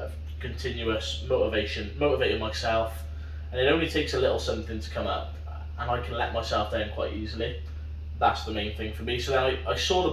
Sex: male